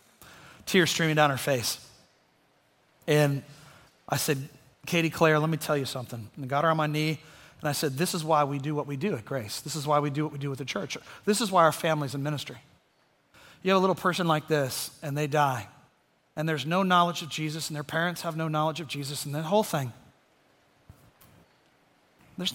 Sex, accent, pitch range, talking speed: male, American, 135-165 Hz, 220 wpm